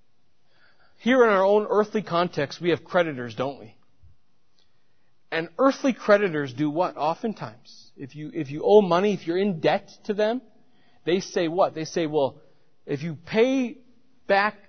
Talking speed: 160 wpm